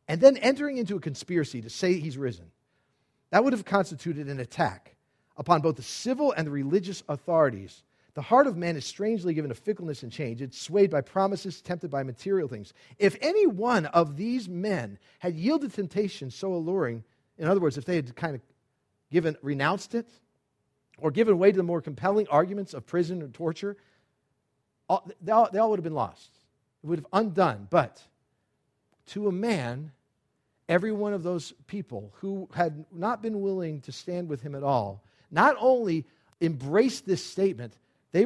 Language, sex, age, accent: English, male, 50-69, American